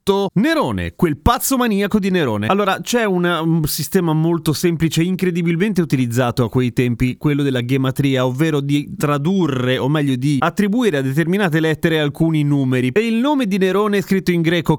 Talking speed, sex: 170 wpm, male